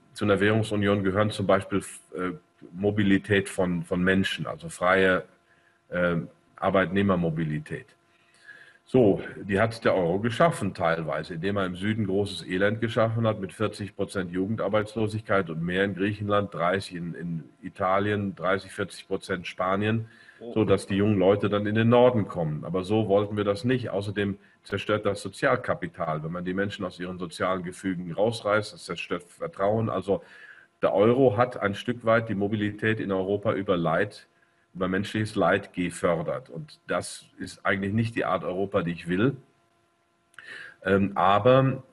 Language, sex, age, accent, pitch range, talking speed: German, male, 40-59, German, 95-105 Hz, 150 wpm